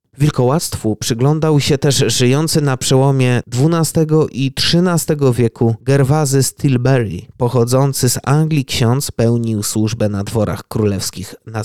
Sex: male